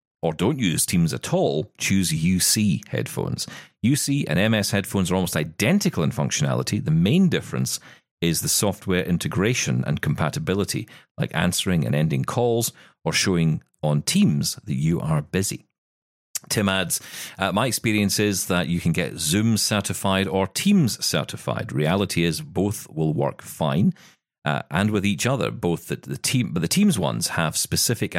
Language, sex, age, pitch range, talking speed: English, male, 40-59, 85-115 Hz, 155 wpm